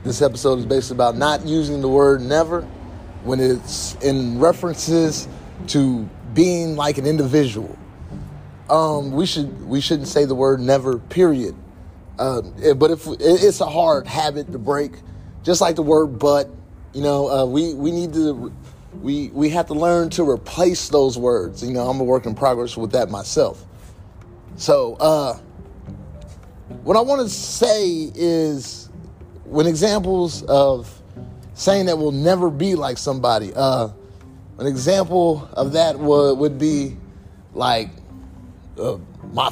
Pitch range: 115-165 Hz